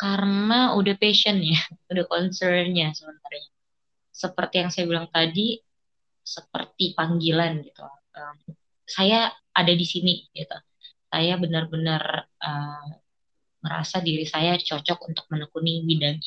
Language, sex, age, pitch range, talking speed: Indonesian, female, 20-39, 155-185 Hz, 110 wpm